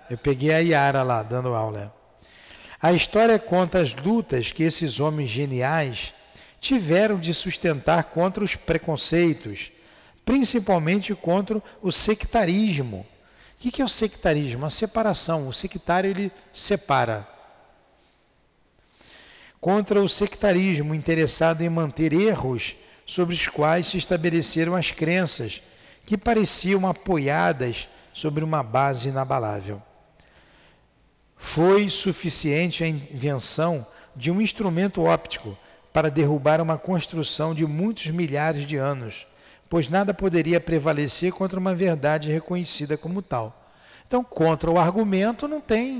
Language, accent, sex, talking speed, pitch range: Portuguese, Brazilian, male, 120 wpm, 150-195 Hz